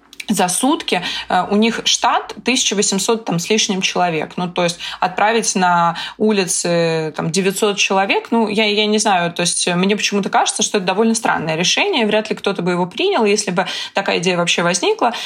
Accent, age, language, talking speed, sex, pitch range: native, 20-39, Russian, 175 wpm, female, 175-220 Hz